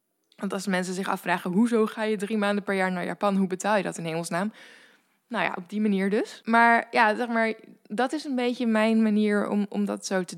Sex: female